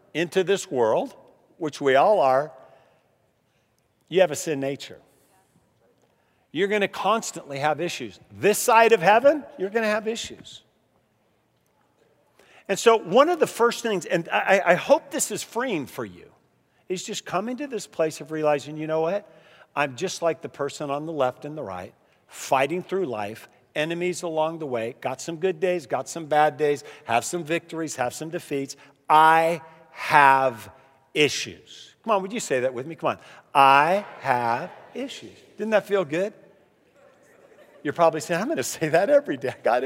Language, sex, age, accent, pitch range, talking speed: English, male, 50-69, American, 150-215 Hz, 180 wpm